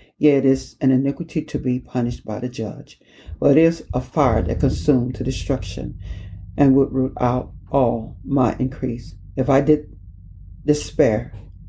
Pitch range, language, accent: 115-140 Hz, English, American